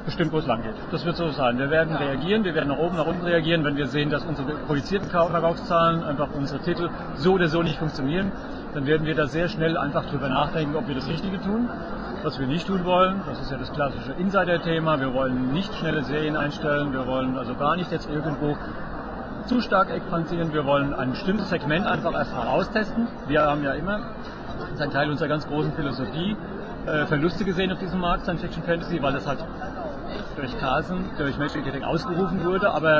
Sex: male